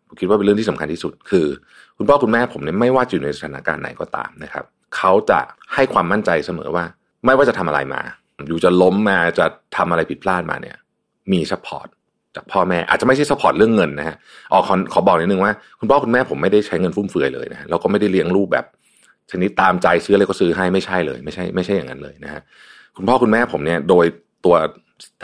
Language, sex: Thai, male